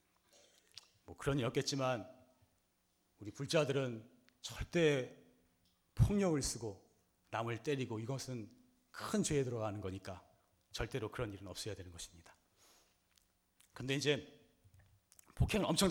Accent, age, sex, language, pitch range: native, 40-59, male, Korean, 110-170 Hz